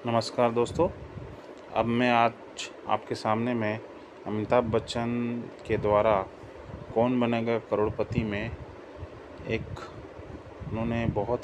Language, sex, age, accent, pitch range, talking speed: Hindi, male, 20-39, native, 110-150 Hz, 100 wpm